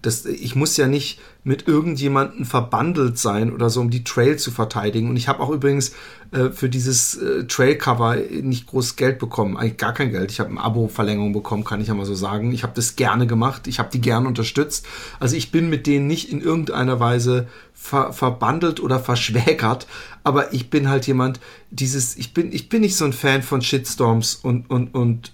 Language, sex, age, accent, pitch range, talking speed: German, male, 40-59, German, 115-145 Hz, 205 wpm